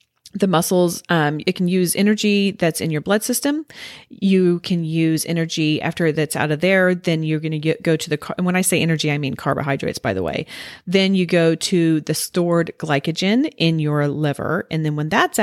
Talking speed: 210 wpm